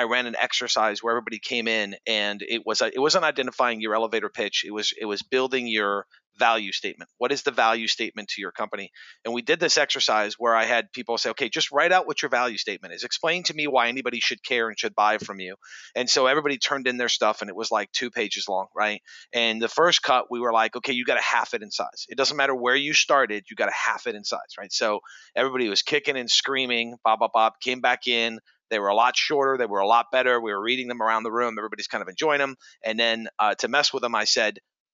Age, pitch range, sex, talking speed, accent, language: 30-49, 110-135 Hz, male, 265 wpm, American, English